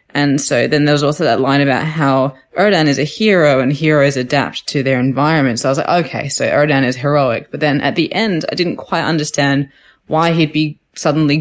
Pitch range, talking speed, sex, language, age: 130-155 Hz, 220 wpm, female, English, 10-29